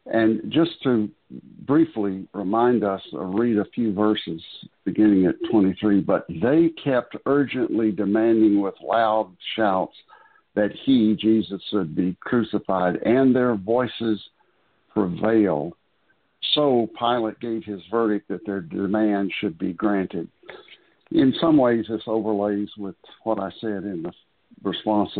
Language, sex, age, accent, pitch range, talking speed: English, male, 60-79, American, 100-120 Hz, 130 wpm